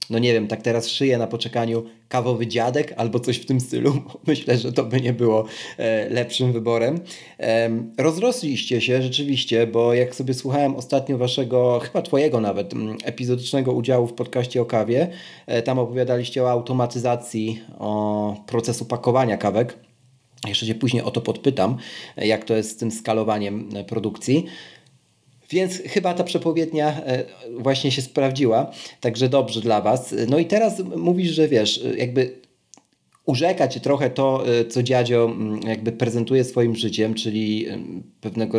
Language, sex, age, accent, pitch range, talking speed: Polish, male, 40-59, native, 110-130 Hz, 145 wpm